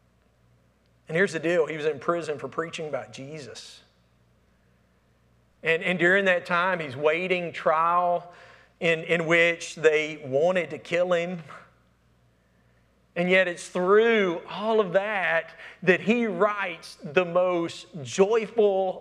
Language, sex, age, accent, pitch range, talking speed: English, male, 40-59, American, 160-200 Hz, 130 wpm